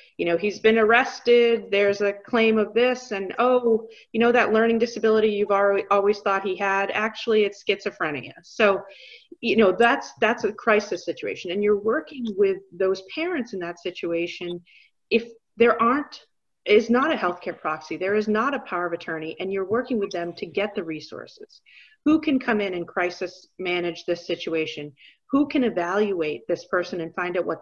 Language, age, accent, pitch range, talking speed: English, 40-59, American, 180-240 Hz, 185 wpm